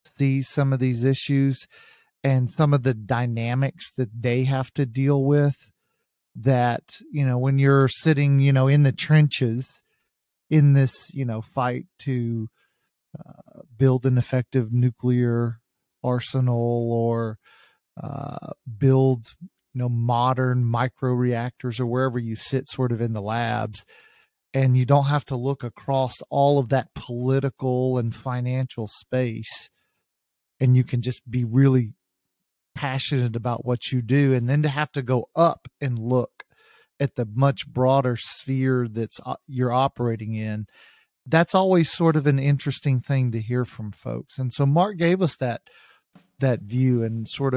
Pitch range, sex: 120-140 Hz, male